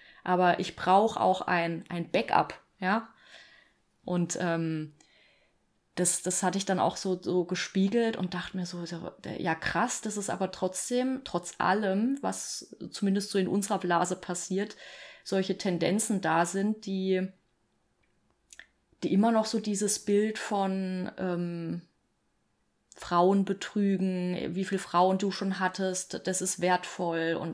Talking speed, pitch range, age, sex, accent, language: 140 wpm, 175-195 Hz, 20-39, female, German, German